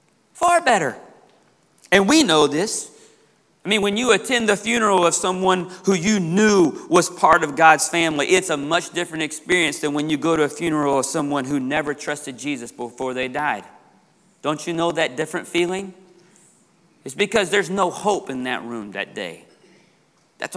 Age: 40-59